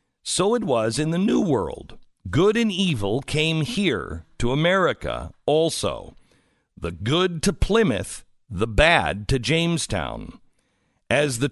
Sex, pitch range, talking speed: male, 115-165 Hz, 130 wpm